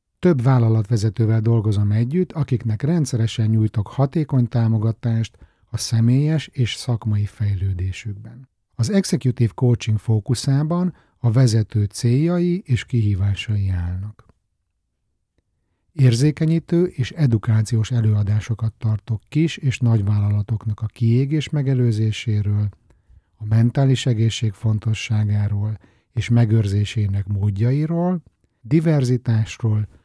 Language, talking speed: Hungarian, 85 wpm